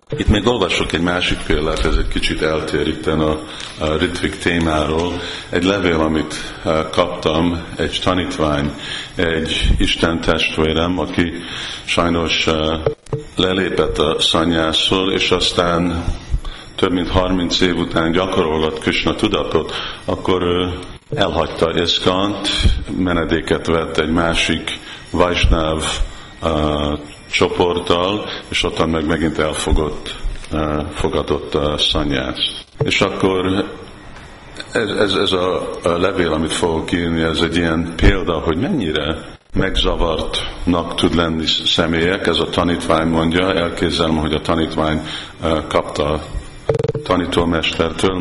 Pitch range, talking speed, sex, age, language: 80-90 Hz, 105 wpm, male, 50-69, Hungarian